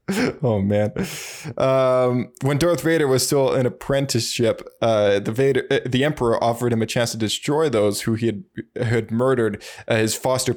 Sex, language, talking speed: male, English, 175 wpm